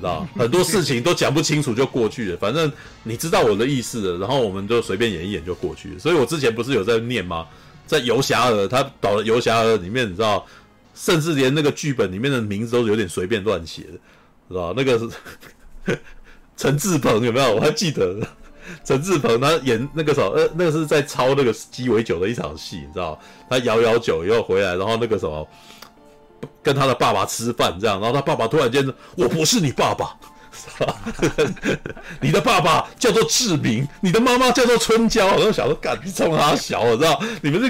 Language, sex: Chinese, male